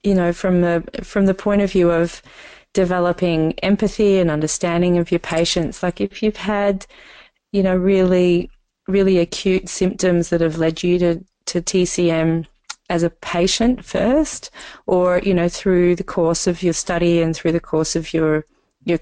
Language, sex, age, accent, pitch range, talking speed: English, female, 30-49, Australian, 165-185 Hz, 170 wpm